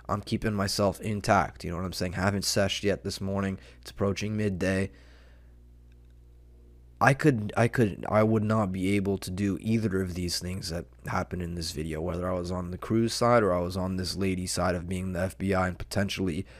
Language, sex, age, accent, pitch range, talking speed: English, male, 20-39, American, 85-100 Hz, 210 wpm